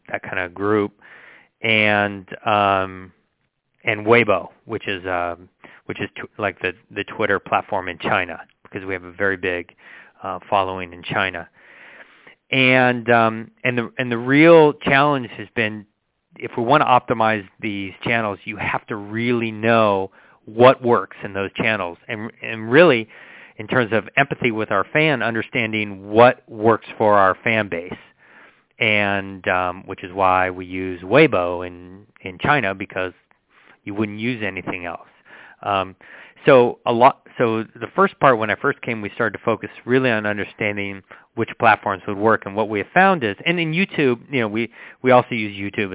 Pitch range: 100-120 Hz